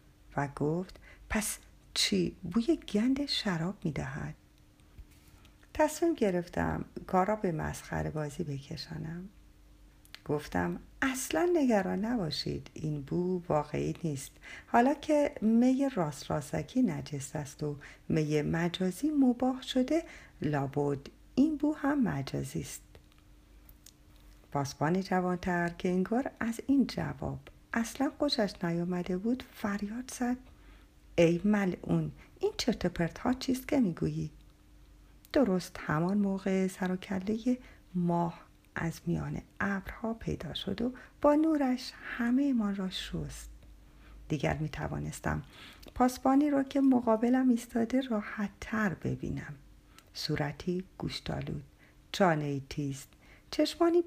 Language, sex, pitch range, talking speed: Persian, female, 155-250 Hz, 110 wpm